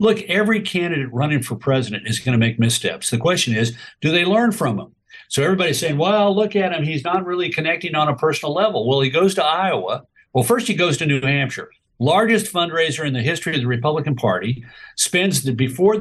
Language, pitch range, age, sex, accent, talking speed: English, 130-175 Hz, 50-69, male, American, 215 wpm